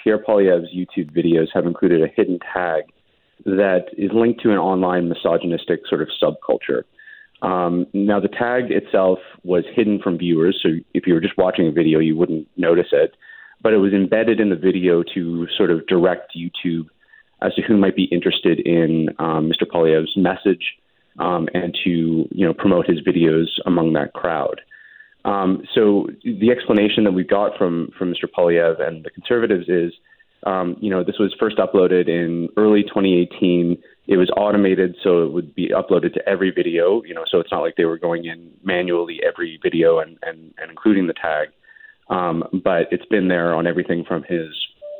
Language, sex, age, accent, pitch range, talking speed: English, male, 30-49, American, 85-105 Hz, 185 wpm